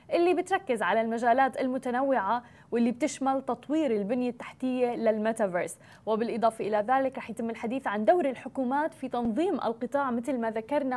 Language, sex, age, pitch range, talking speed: English, female, 20-39, 235-290 Hz, 135 wpm